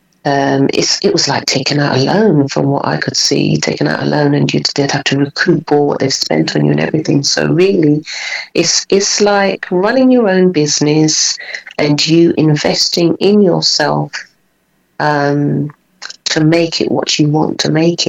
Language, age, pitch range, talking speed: English, 40-59, 140-160 Hz, 180 wpm